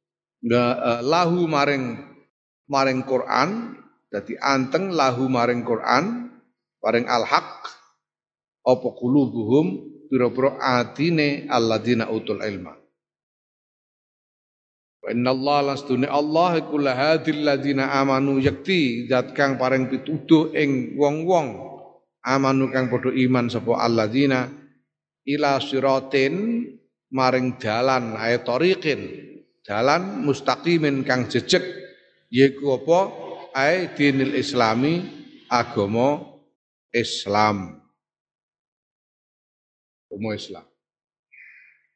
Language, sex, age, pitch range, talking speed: Indonesian, male, 50-69, 120-155 Hz, 75 wpm